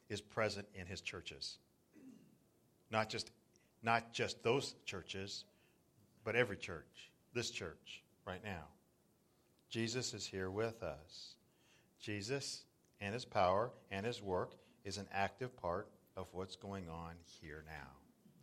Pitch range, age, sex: 90-115 Hz, 50-69, male